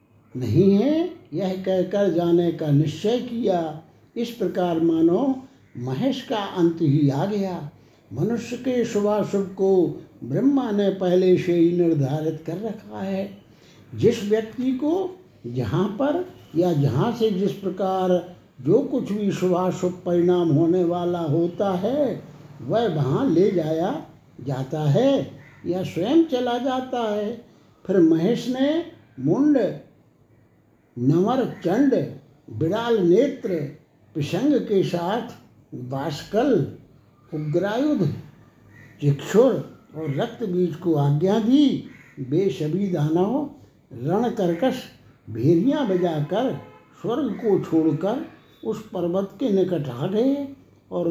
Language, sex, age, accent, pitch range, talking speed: Hindi, male, 60-79, native, 155-220 Hz, 110 wpm